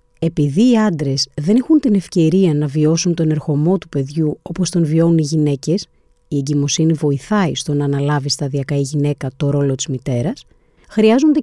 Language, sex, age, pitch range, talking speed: Greek, female, 30-49, 150-215 Hz, 170 wpm